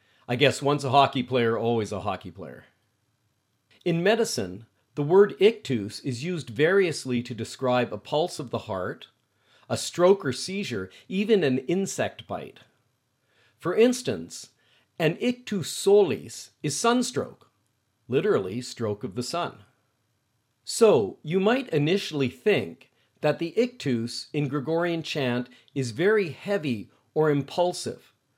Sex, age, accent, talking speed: male, 50-69, American, 130 wpm